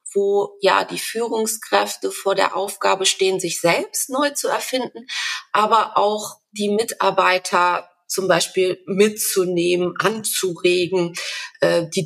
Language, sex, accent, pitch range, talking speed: German, female, German, 185-230 Hz, 115 wpm